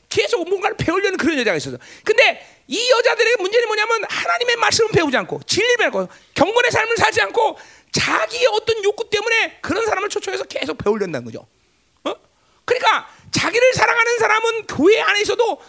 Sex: male